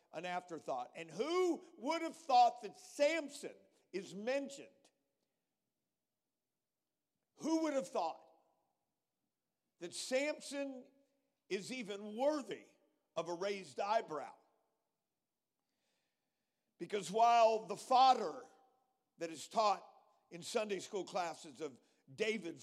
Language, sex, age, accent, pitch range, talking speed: English, male, 50-69, American, 180-235 Hz, 100 wpm